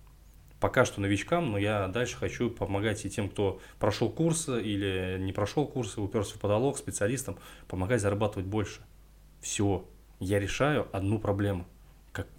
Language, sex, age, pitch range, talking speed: Russian, male, 20-39, 95-115 Hz, 145 wpm